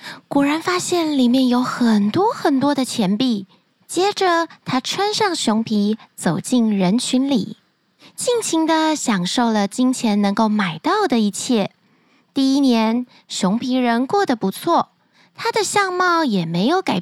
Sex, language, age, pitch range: female, Chinese, 20-39, 210-310 Hz